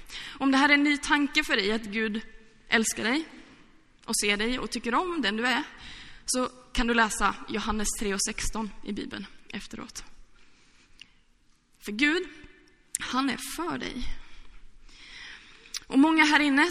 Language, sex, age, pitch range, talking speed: Swedish, female, 20-39, 250-335 Hz, 145 wpm